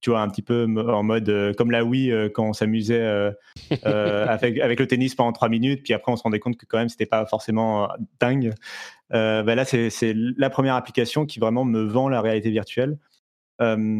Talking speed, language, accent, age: 220 wpm, French, French, 30-49